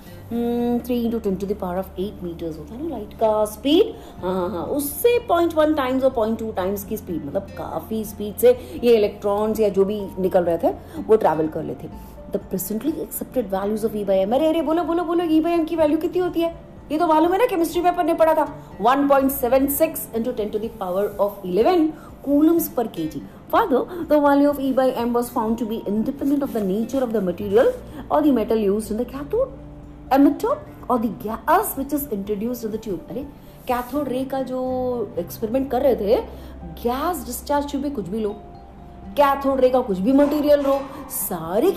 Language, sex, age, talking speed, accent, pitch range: Hindi, female, 30-49, 80 wpm, native, 210-305 Hz